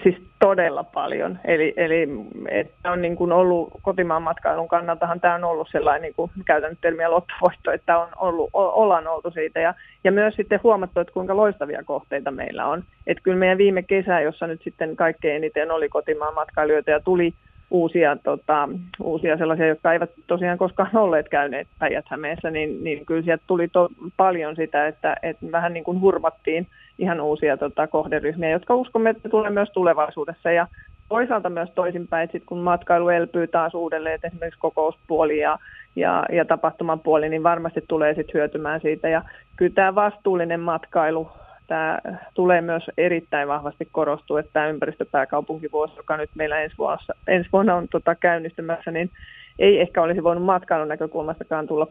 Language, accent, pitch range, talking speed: Finnish, native, 155-175 Hz, 165 wpm